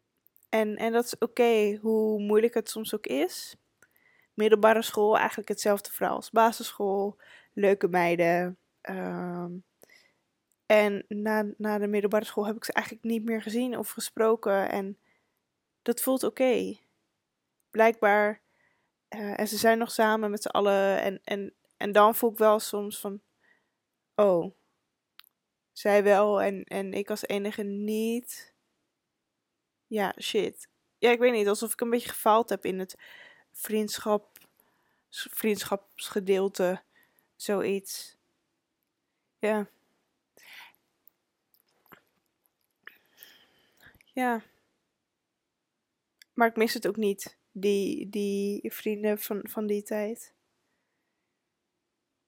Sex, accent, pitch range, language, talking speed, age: female, Dutch, 205-230 Hz, Dutch, 115 wpm, 10-29